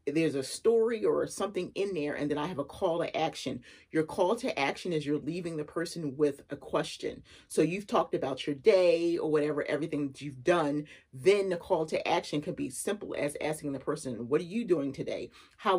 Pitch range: 145-195 Hz